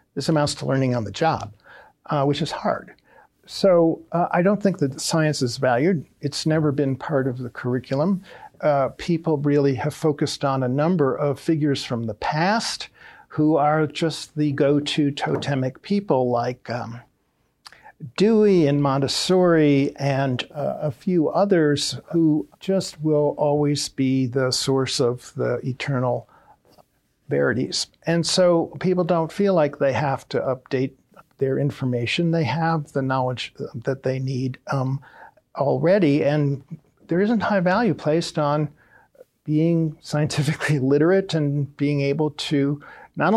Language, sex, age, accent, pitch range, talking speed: English, male, 60-79, American, 135-165 Hz, 145 wpm